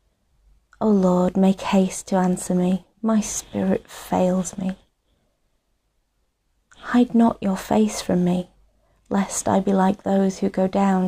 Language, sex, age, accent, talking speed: English, female, 30-49, British, 135 wpm